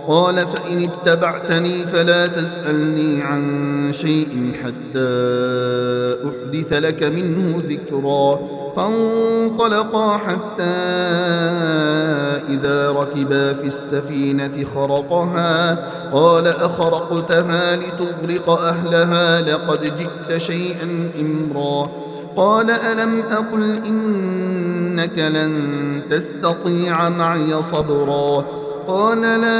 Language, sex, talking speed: Arabic, male, 75 wpm